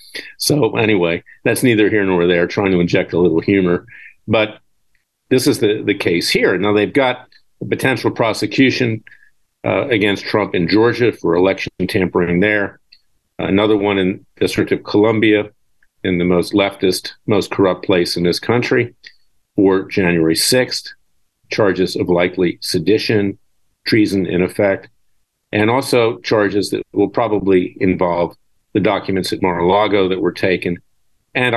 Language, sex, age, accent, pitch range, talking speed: English, male, 50-69, American, 95-115 Hz, 145 wpm